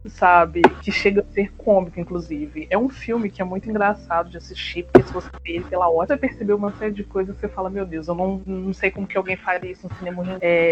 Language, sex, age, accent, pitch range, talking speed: Portuguese, female, 20-39, Brazilian, 170-200 Hz, 265 wpm